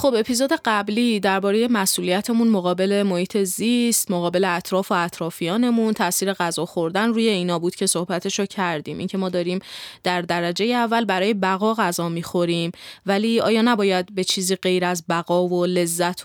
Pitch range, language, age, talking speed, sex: 180-205 Hz, Persian, 20-39, 150 wpm, female